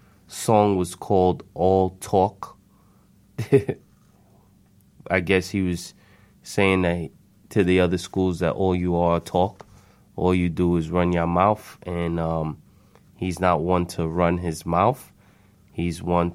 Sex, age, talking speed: male, 20-39, 140 wpm